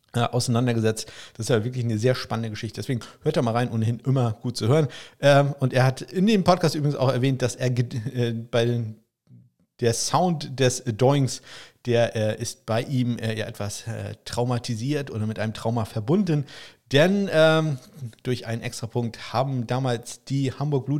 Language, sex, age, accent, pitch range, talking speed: German, male, 50-69, German, 115-150 Hz, 165 wpm